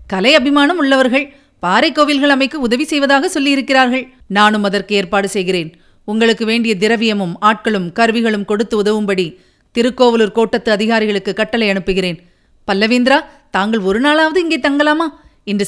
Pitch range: 200-260 Hz